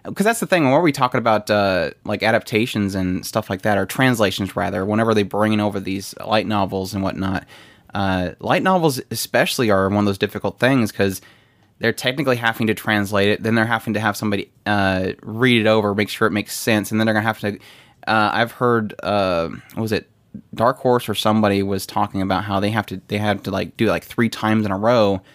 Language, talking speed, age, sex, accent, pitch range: English, 225 wpm, 20-39, male, American, 105-120 Hz